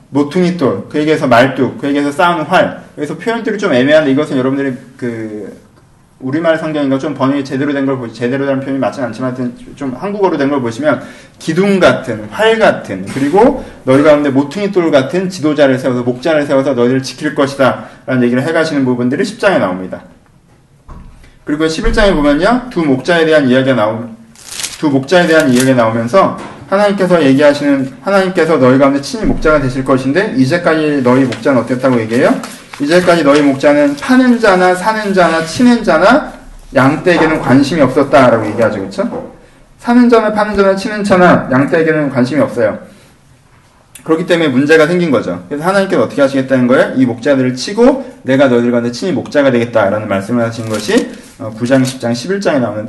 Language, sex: Korean, male